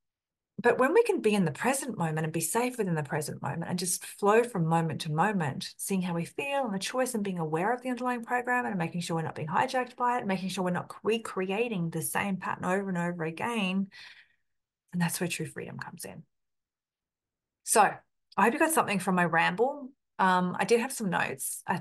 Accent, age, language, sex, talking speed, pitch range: Australian, 30-49, English, female, 225 wpm, 175-240 Hz